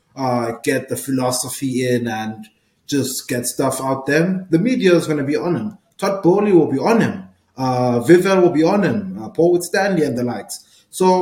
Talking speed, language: 210 wpm, English